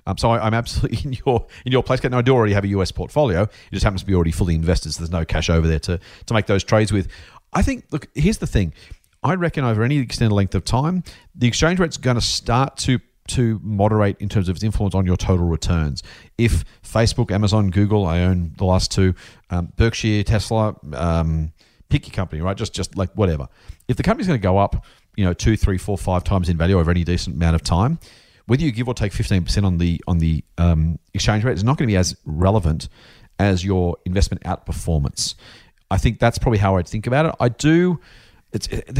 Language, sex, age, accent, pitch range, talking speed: English, male, 40-59, Australian, 90-115 Hz, 230 wpm